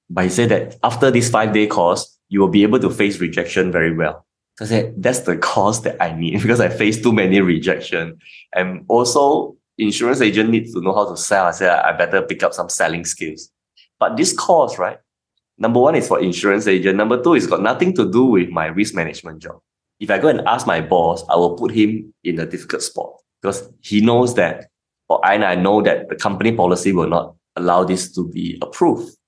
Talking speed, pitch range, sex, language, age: 215 wpm, 90-110 Hz, male, English, 20-39